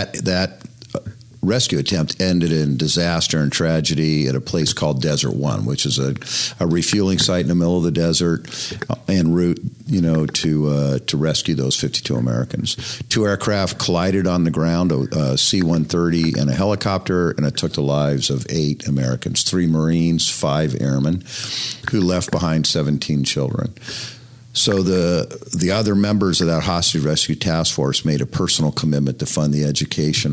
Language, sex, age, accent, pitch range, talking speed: English, male, 50-69, American, 75-95 Hz, 165 wpm